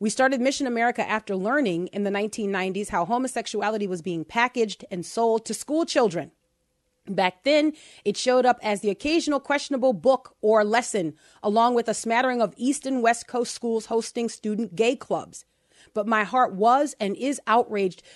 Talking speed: 170 wpm